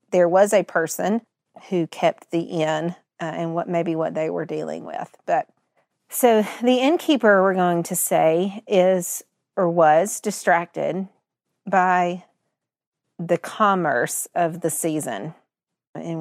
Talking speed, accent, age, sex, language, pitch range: 135 wpm, American, 40-59, female, English, 165-210 Hz